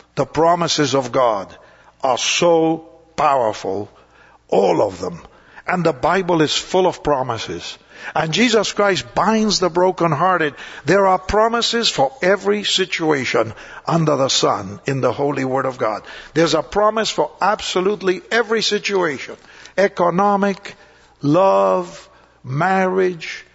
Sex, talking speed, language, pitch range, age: male, 120 wpm, English, 145-185 Hz, 60-79